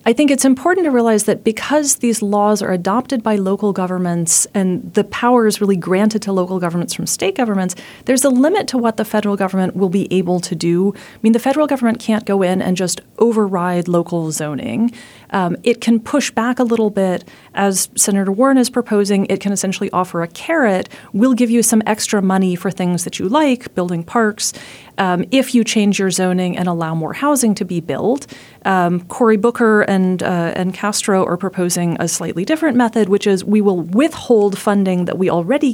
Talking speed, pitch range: 200 wpm, 185-230 Hz